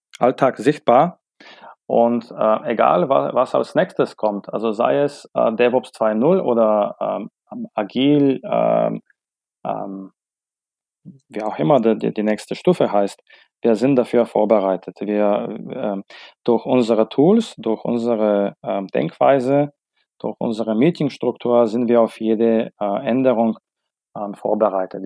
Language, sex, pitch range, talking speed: German, male, 110-130 Hz, 125 wpm